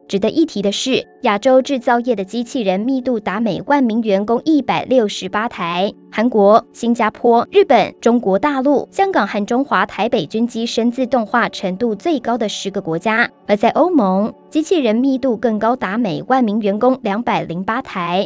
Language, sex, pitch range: Chinese, male, 200-260 Hz